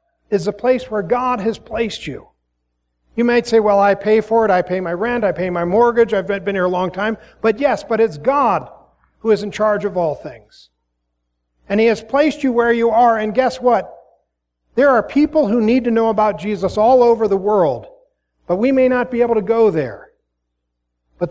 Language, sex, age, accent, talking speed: English, male, 50-69, American, 215 wpm